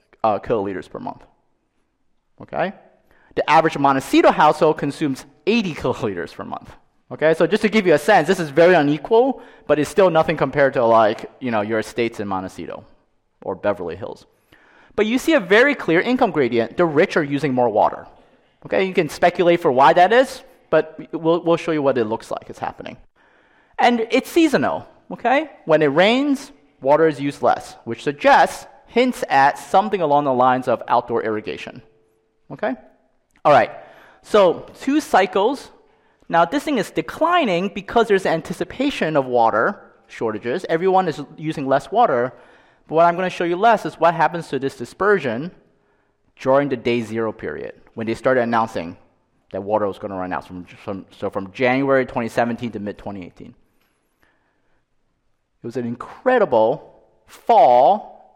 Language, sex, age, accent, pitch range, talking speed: English, male, 30-49, American, 125-205 Hz, 165 wpm